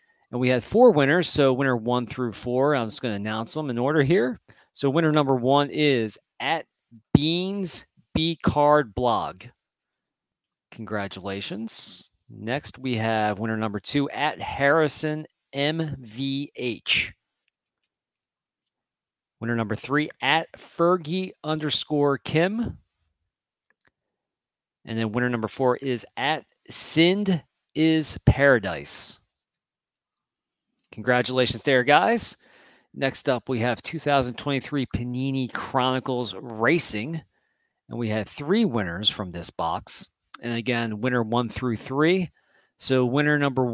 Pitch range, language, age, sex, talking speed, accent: 115-150 Hz, English, 40-59, male, 105 wpm, American